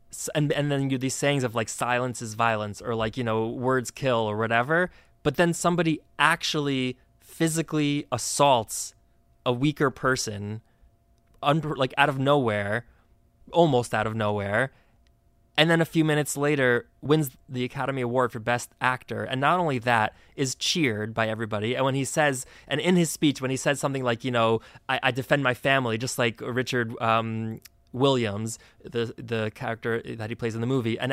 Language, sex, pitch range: English, male, 115-150 Hz